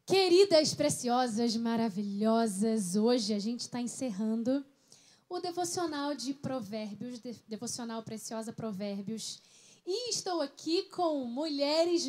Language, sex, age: Portuguese, female, 10-29